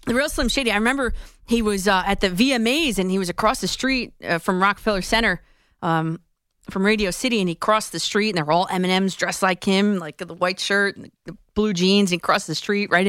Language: English